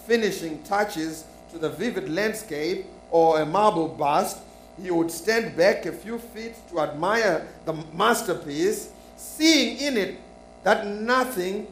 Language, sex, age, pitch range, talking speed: English, male, 50-69, 165-230 Hz, 135 wpm